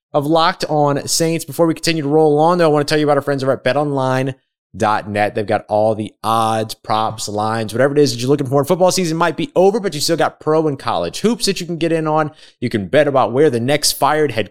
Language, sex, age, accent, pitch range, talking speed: English, male, 20-39, American, 105-155 Hz, 265 wpm